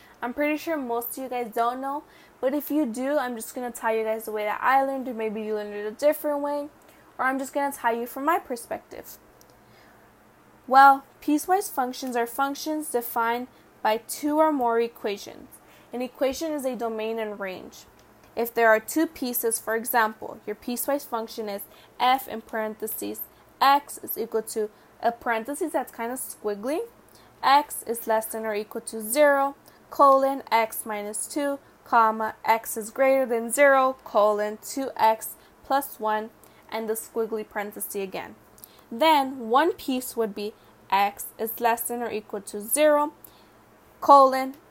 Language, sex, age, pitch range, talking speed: English, female, 10-29, 220-275 Hz, 170 wpm